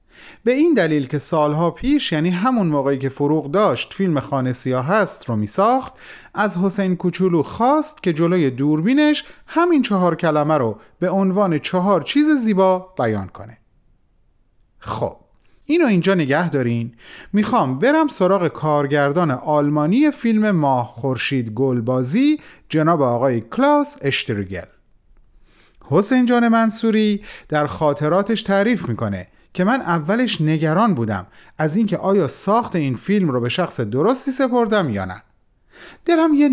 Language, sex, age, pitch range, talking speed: Persian, male, 30-49, 130-215 Hz, 135 wpm